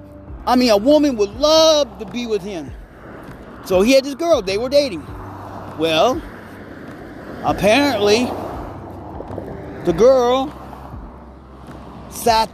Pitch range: 145-235 Hz